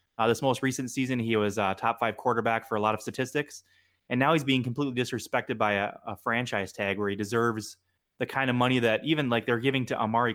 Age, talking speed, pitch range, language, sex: 20-39, 245 wpm, 110-130 Hz, English, male